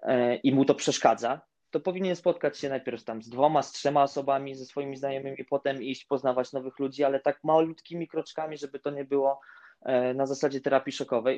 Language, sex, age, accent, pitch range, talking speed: Polish, male, 20-39, native, 125-150 Hz, 190 wpm